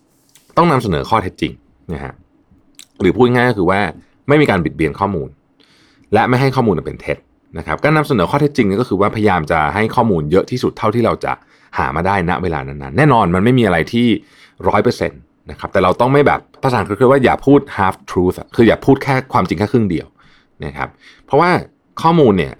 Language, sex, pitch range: Thai, male, 80-120 Hz